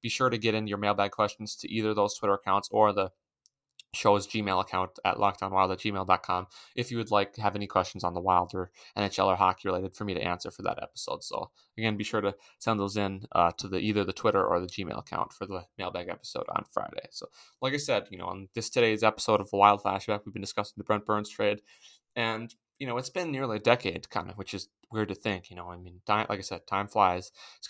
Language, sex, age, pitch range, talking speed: English, male, 20-39, 95-110 Hz, 245 wpm